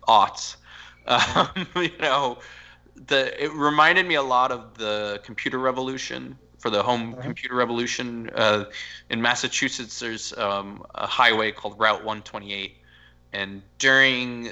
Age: 20-39